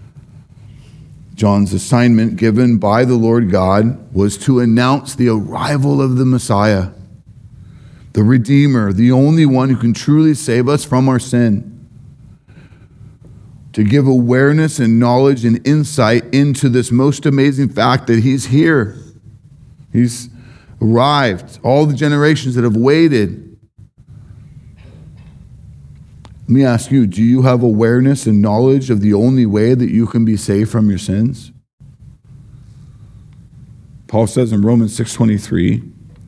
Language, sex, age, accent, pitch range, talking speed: English, male, 40-59, American, 110-135 Hz, 130 wpm